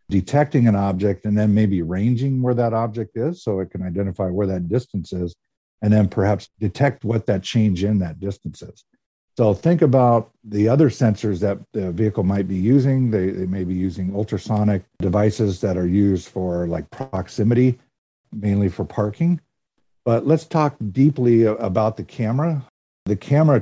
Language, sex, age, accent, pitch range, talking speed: English, male, 50-69, American, 100-125 Hz, 170 wpm